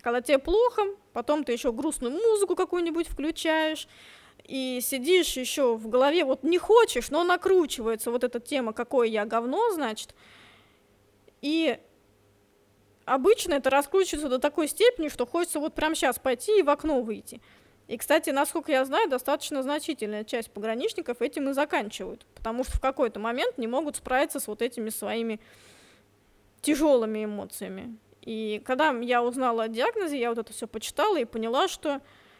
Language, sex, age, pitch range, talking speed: Russian, female, 20-39, 235-315 Hz, 155 wpm